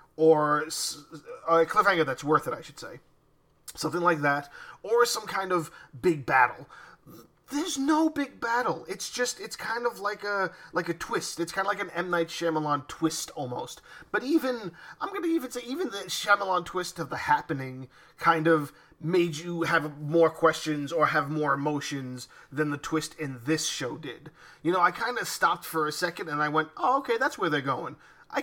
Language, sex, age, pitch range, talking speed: English, male, 20-39, 150-185 Hz, 195 wpm